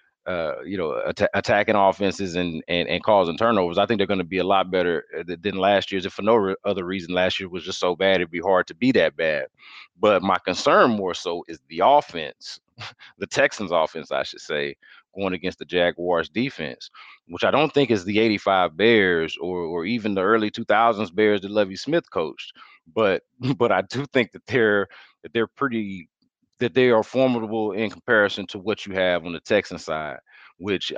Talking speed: 205 wpm